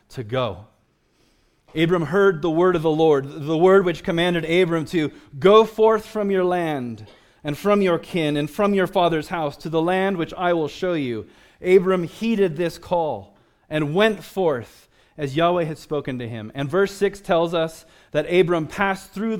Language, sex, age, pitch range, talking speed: English, male, 30-49, 135-185 Hz, 185 wpm